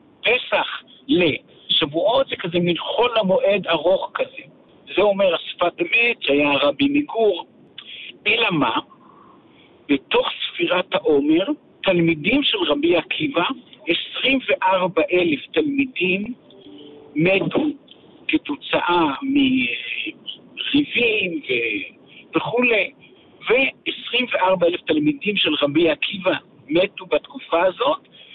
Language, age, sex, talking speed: Hebrew, 60-79, male, 80 wpm